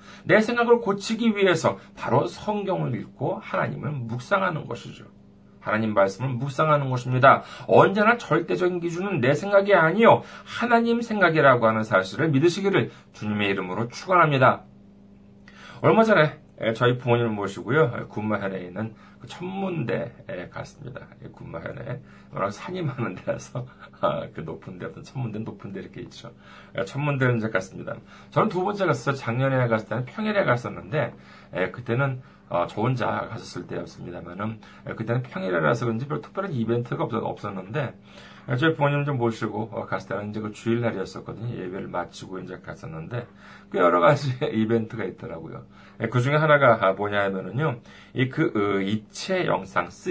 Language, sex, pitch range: Korean, male, 105-150 Hz